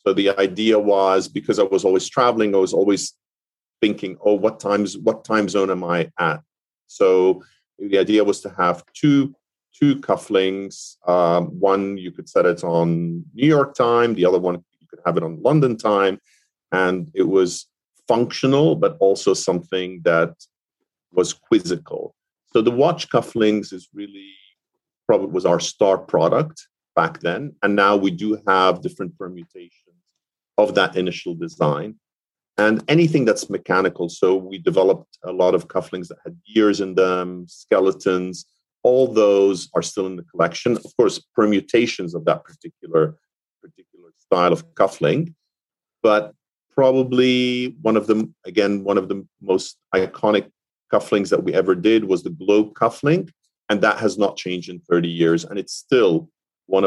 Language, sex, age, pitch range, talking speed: English, male, 40-59, 90-120 Hz, 160 wpm